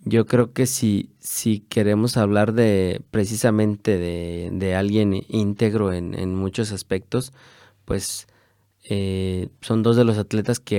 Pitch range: 95-115 Hz